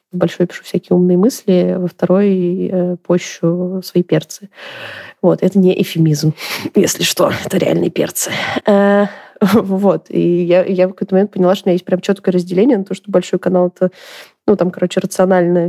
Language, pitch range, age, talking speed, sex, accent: Russian, 175-195 Hz, 20-39, 185 wpm, female, native